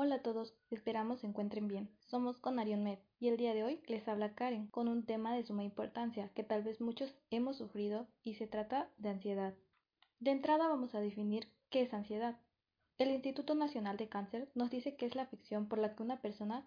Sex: female